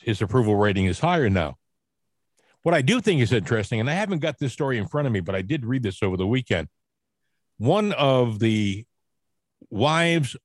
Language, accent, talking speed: English, American, 195 wpm